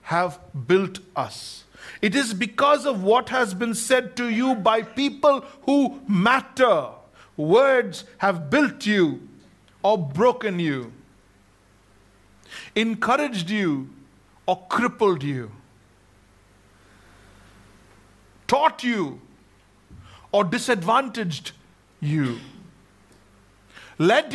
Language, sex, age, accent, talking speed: English, male, 60-79, Indian, 85 wpm